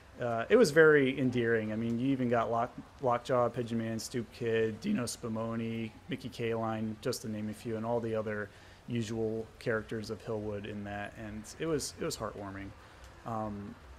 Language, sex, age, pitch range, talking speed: English, male, 30-49, 110-135 Hz, 180 wpm